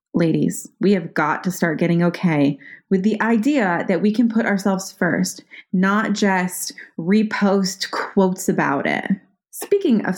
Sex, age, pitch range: female, 20-39, 185-235 Hz